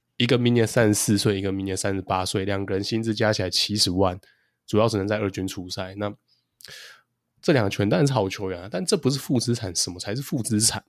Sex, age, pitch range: male, 20-39, 100-120 Hz